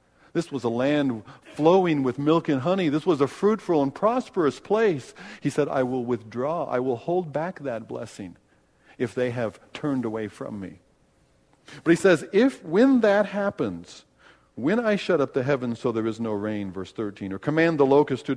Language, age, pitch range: English, 50-69, 120-175 Hz